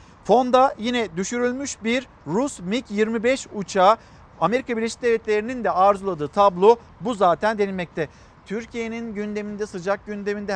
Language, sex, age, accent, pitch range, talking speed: Turkish, male, 50-69, native, 190-235 Hz, 115 wpm